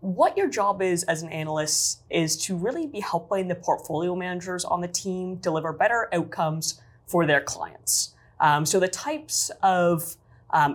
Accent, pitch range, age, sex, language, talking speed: American, 150-190 Hz, 20-39, female, English, 165 wpm